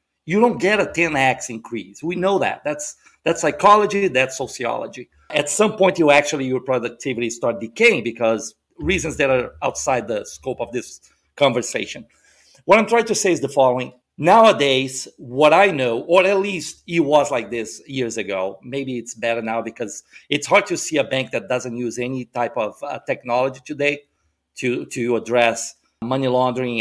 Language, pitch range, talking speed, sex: English, 130-180 Hz, 175 wpm, male